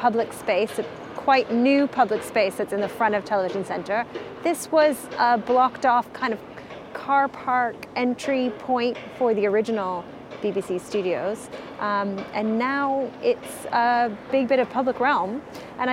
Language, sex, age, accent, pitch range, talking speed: English, female, 30-49, American, 205-260 Hz, 155 wpm